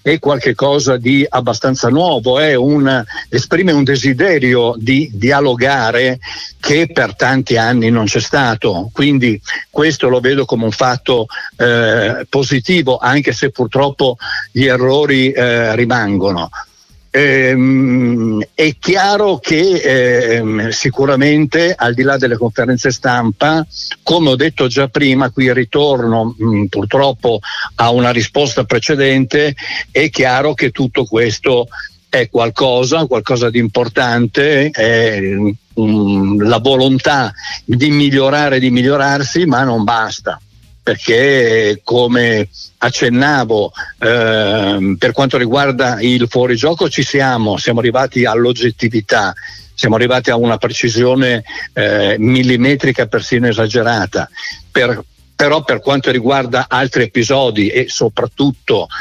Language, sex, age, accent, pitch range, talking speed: Italian, male, 60-79, native, 115-135 Hz, 115 wpm